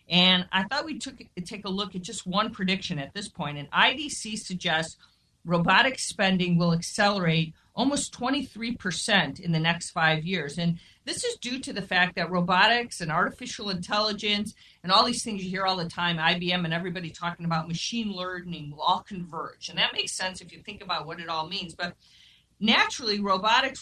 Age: 40-59